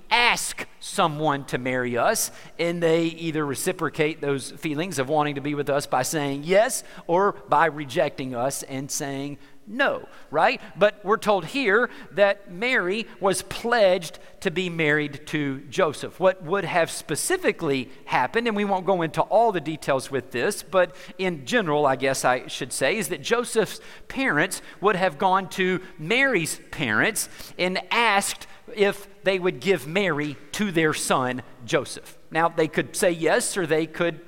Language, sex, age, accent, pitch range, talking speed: English, male, 50-69, American, 150-200 Hz, 165 wpm